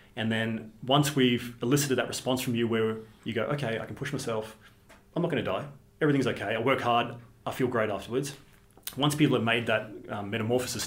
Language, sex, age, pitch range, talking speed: English, male, 30-49, 105-125 Hz, 205 wpm